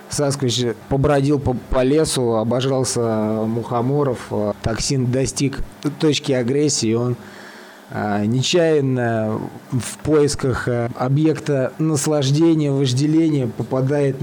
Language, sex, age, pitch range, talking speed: Russian, male, 20-39, 115-145 Hz, 75 wpm